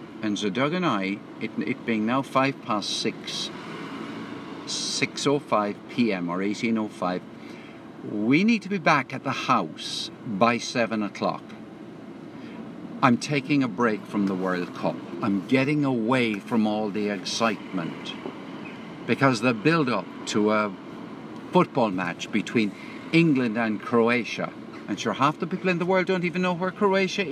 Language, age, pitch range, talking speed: English, 60-79, 115-170 Hz, 145 wpm